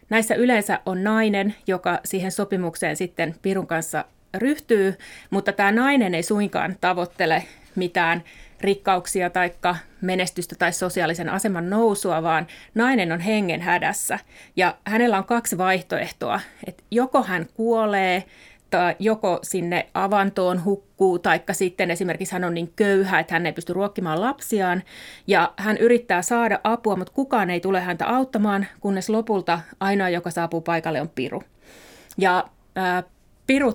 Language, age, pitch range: Finnish, 30-49, 175-215 Hz